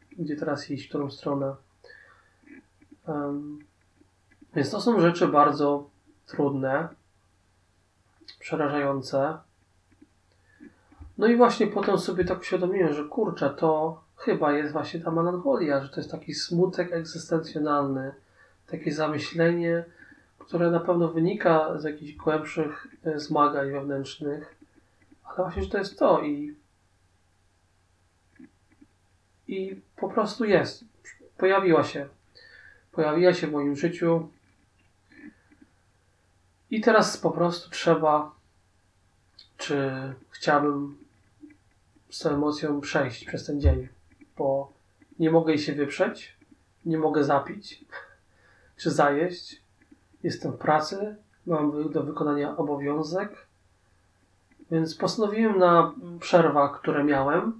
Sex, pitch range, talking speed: male, 140-170 Hz, 105 wpm